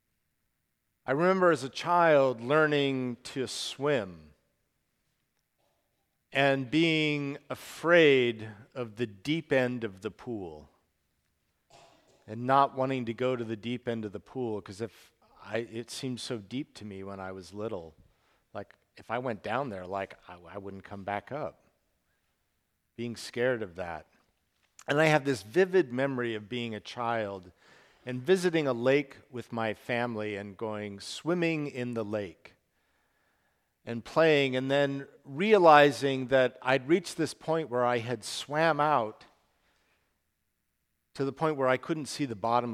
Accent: American